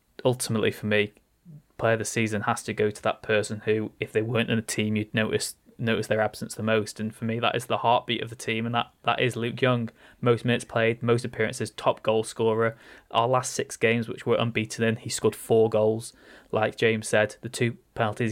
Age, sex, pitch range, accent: 20-39, male, 110-120 Hz, British